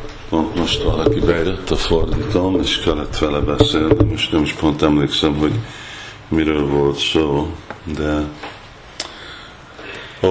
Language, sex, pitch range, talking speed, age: Hungarian, male, 75-90 Hz, 110 wpm, 50-69